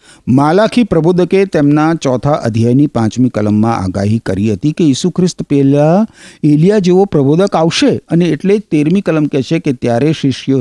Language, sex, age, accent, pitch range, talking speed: Gujarati, male, 50-69, native, 95-160 Hz, 115 wpm